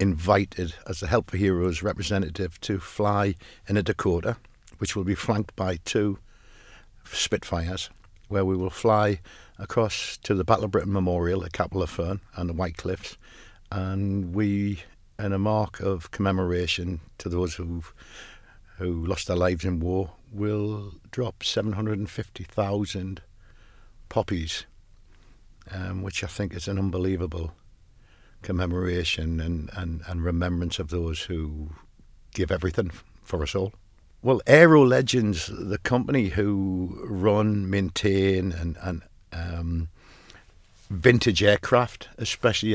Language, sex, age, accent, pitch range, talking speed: English, male, 60-79, British, 90-105 Hz, 130 wpm